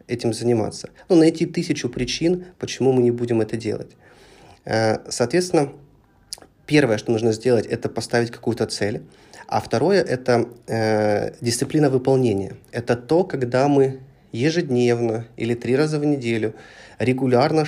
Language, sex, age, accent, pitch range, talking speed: Russian, male, 20-39, native, 110-135 Hz, 130 wpm